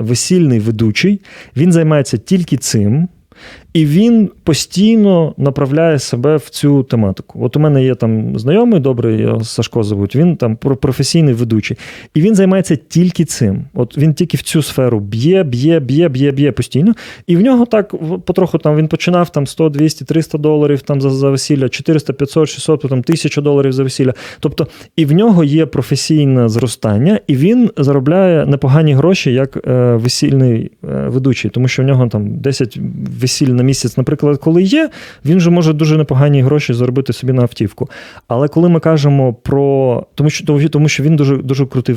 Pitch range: 125-160 Hz